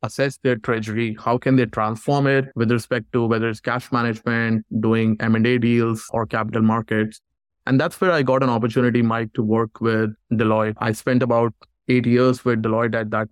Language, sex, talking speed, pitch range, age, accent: English, male, 190 wpm, 110-125 Hz, 20-39, Indian